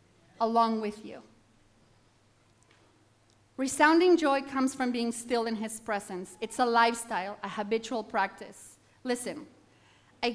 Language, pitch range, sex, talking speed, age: English, 205-255 Hz, female, 115 wpm, 30-49